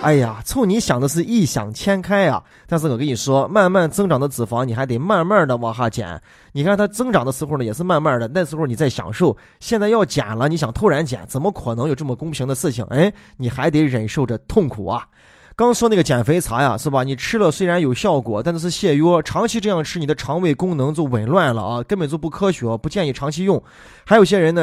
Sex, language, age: male, Chinese, 20-39